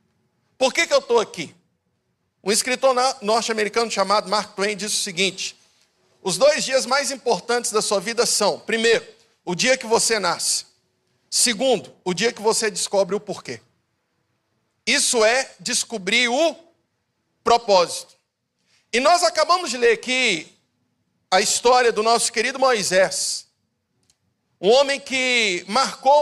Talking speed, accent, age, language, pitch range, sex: 135 wpm, Brazilian, 50-69, Portuguese, 205-265 Hz, male